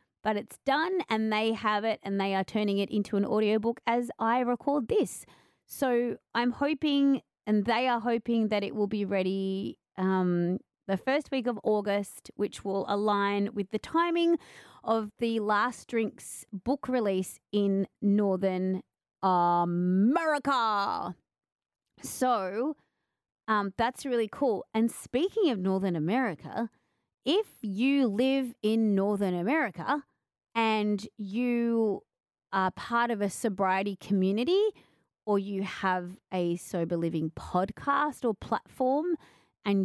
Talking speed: 130 wpm